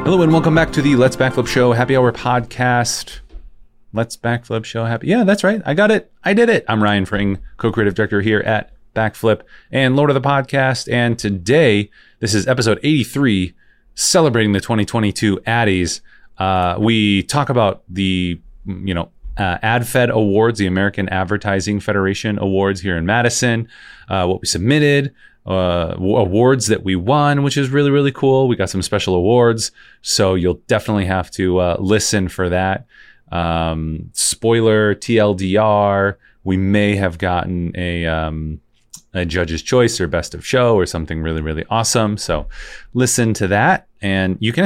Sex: male